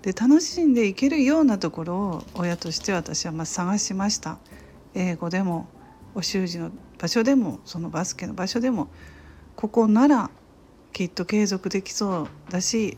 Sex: female